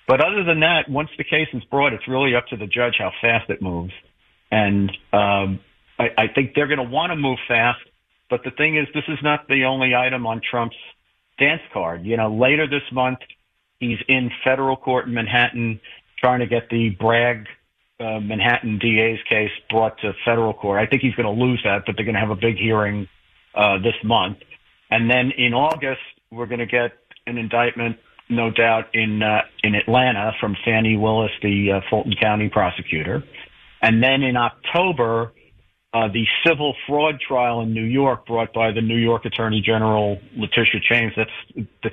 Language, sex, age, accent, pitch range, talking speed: English, male, 50-69, American, 105-125 Hz, 190 wpm